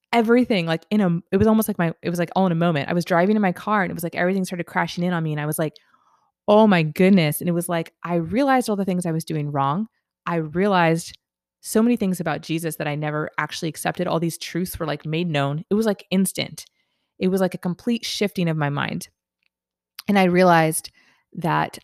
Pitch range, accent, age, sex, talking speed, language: 155-195 Hz, American, 20-39, female, 240 wpm, English